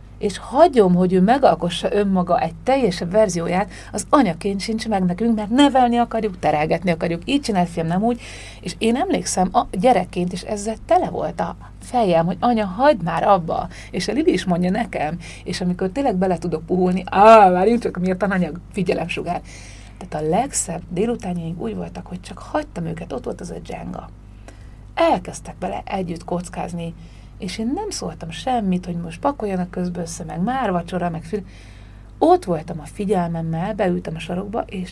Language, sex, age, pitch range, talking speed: Hungarian, female, 30-49, 170-215 Hz, 175 wpm